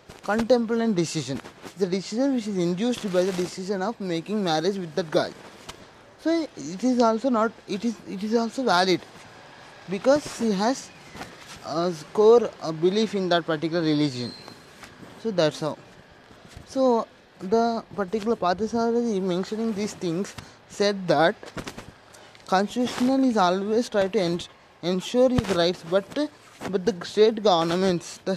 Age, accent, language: 20-39, native, Telugu